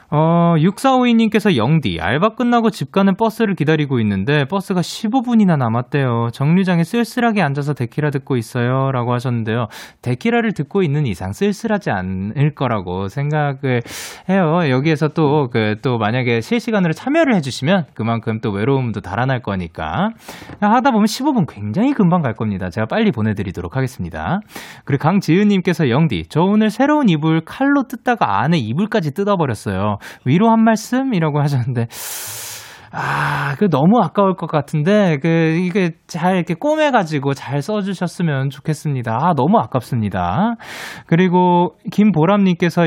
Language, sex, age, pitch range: Korean, male, 20-39, 115-185 Hz